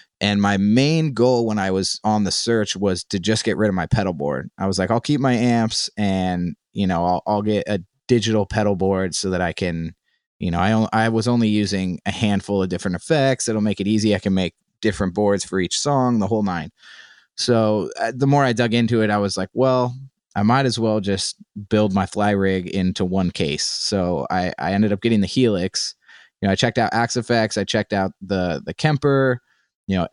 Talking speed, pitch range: 230 wpm, 95-115 Hz